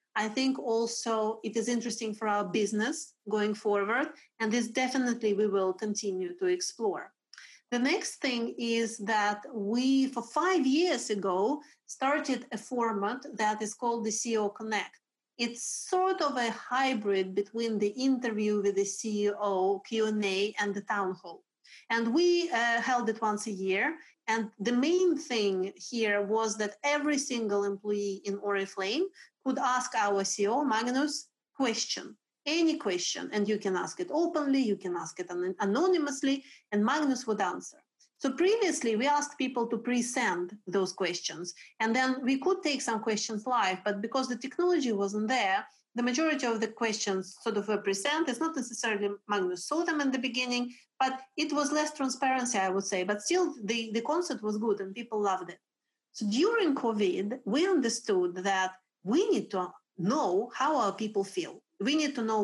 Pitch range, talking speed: 205-275 Hz, 165 wpm